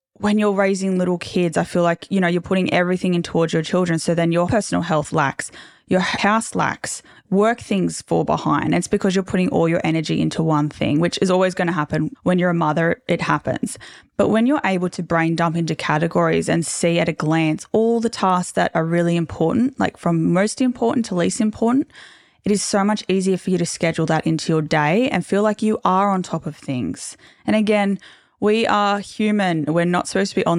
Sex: female